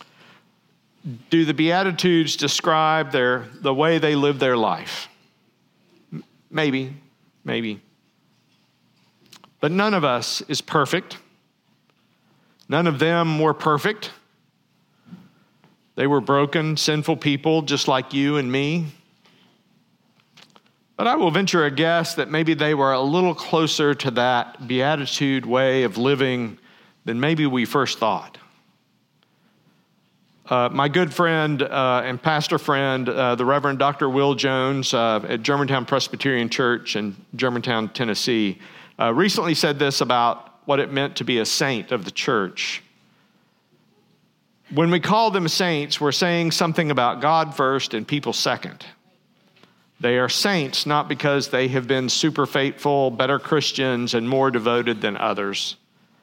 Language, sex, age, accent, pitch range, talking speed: English, male, 50-69, American, 130-165 Hz, 135 wpm